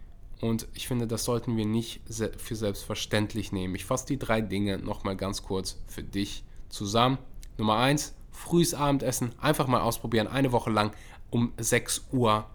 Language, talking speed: German, 165 wpm